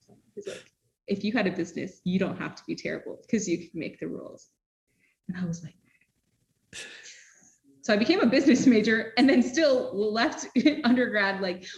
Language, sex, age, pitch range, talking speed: English, female, 20-39, 180-245 Hz, 175 wpm